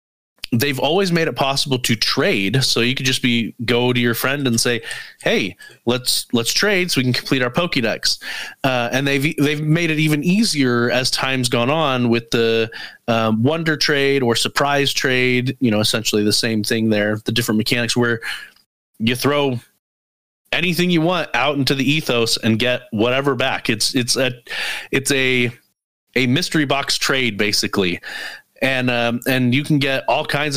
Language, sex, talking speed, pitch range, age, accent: English, male, 175 wpm, 115-140 Hz, 30-49, American